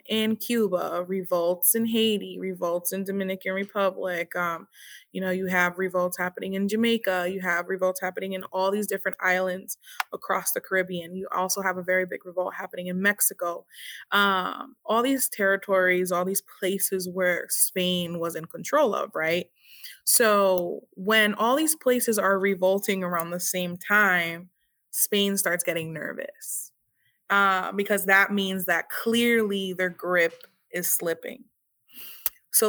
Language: English